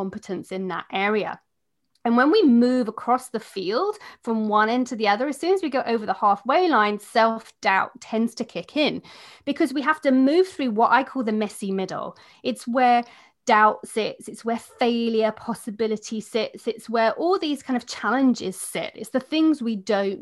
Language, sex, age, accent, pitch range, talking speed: English, female, 30-49, British, 210-275 Hz, 195 wpm